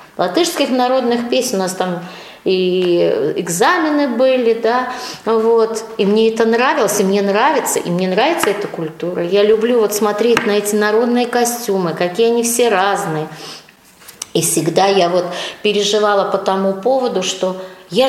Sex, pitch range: female, 195-265 Hz